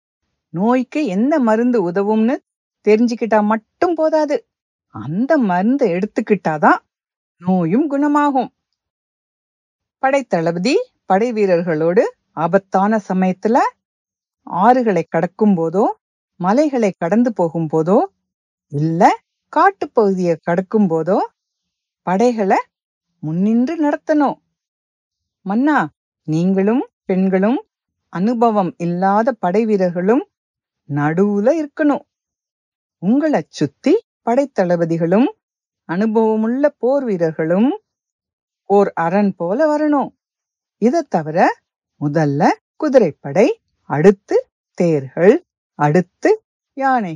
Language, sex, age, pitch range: English, female, 50-69, 180-275 Hz